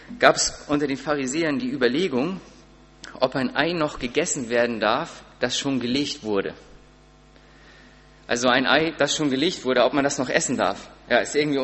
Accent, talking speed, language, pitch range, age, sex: German, 175 wpm, German, 130-160 Hz, 30-49, male